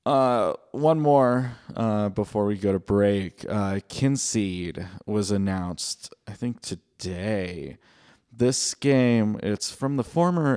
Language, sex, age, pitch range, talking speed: English, male, 20-39, 95-115 Hz, 125 wpm